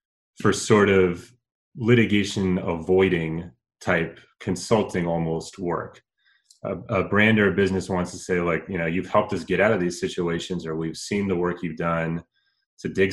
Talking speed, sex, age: 175 wpm, male, 30-49